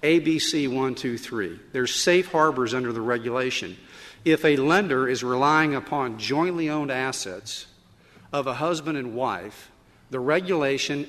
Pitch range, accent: 125-155 Hz, American